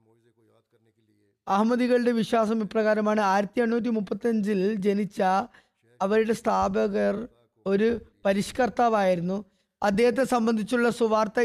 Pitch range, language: 210-235 Hz, Malayalam